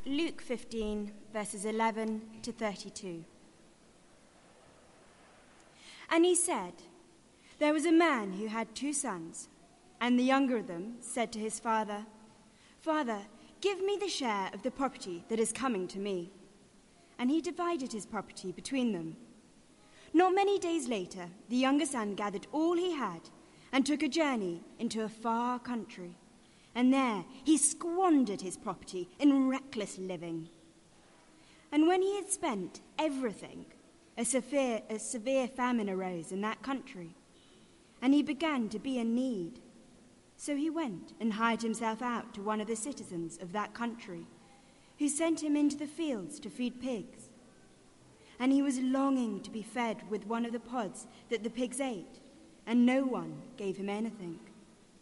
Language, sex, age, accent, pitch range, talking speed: English, female, 20-39, British, 210-275 Hz, 155 wpm